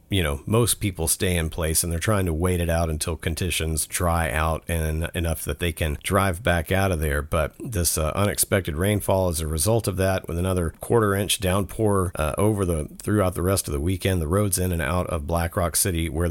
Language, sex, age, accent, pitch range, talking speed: English, male, 50-69, American, 80-100 Hz, 230 wpm